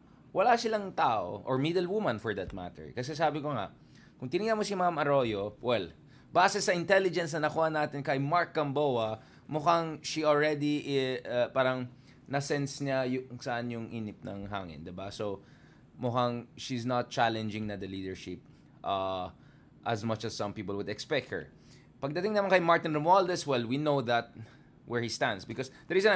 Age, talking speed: 20-39, 170 wpm